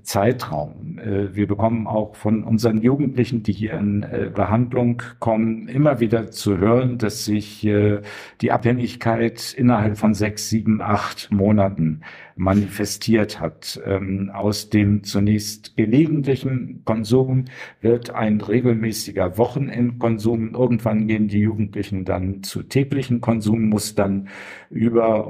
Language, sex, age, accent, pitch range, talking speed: German, male, 50-69, German, 100-120 Hz, 110 wpm